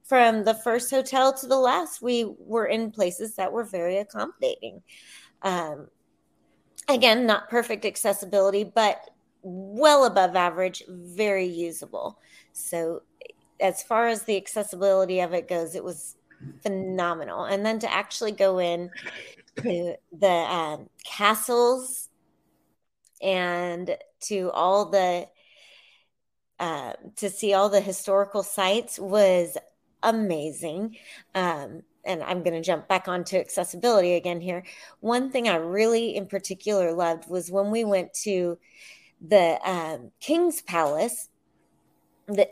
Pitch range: 180-225 Hz